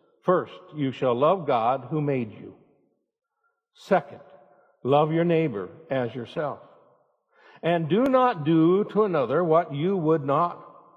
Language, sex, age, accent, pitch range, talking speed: English, male, 60-79, American, 145-175 Hz, 130 wpm